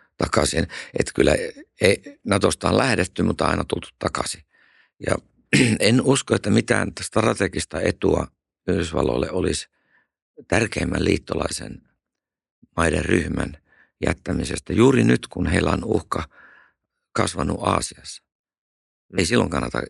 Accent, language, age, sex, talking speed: native, Finnish, 60-79, male, 110 wpm